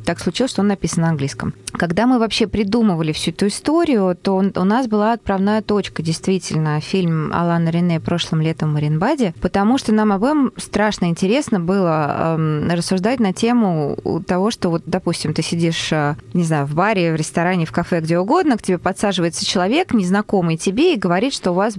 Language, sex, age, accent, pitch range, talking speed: Russian, female, 20-39, native, 170-215 Hz, 180 wpm